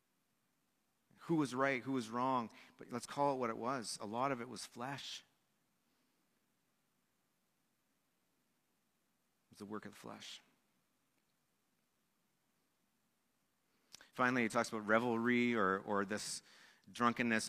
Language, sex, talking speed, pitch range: English, male, 120 wpm, 105-125 Hz